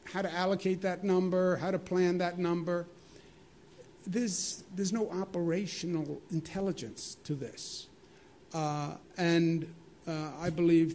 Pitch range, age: 145-170 Hz, 50-69